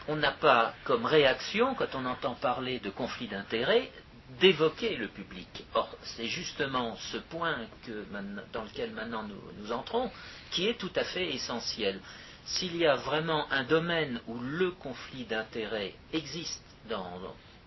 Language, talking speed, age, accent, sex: French, 150 wpm, 50-69, French, male